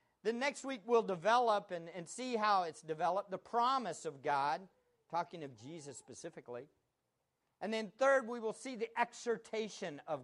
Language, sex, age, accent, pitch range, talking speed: English, male, 50-69, American, 175-240 Hz, 165 wpm